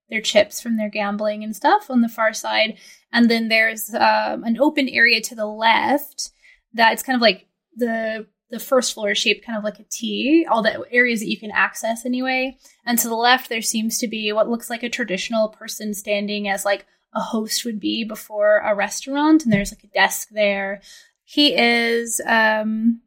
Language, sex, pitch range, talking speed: English, female, 210-250 Hz, 205 wpm